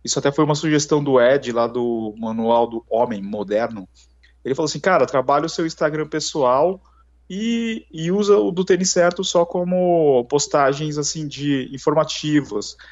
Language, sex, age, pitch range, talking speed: Portuguese, male, 20-39, 115-160 Hz, 165 wpm